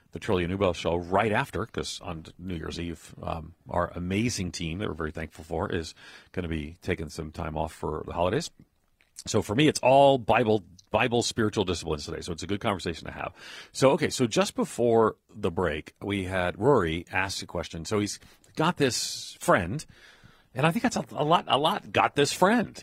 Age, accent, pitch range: 40-59, American, 85-125 Hz